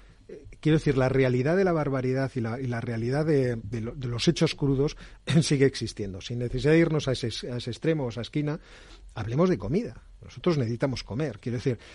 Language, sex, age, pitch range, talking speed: Spanish, male, 40-59, 115-150 Hz, 215 wpm